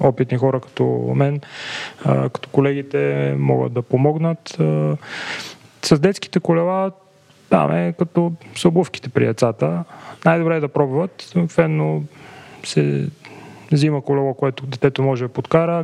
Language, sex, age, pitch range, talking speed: Bulgarian, male, 30-49, 125-150 Hz, 120 wpm